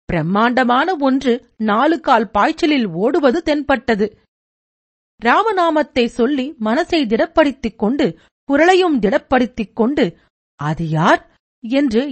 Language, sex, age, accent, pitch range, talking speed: Tamil, female, 50-69, native, 210-300 Hz, 70 wpm